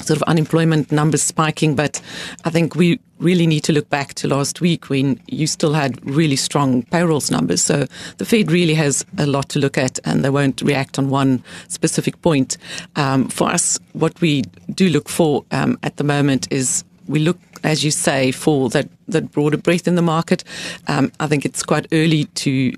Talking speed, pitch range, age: 200 wpm, 135-160 Hz, 40-59